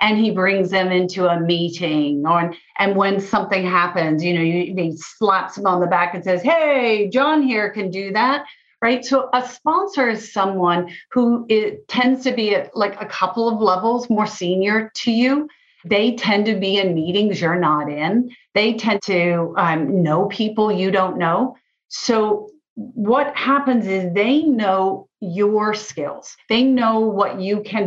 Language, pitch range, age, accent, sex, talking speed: English, 180-235 Hz, 40-59, American, female, 170 wpm